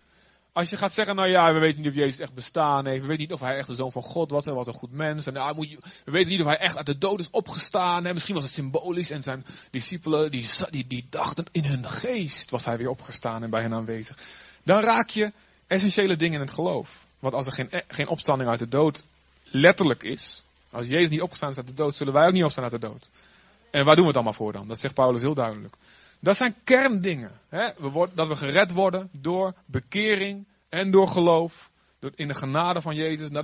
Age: 30-49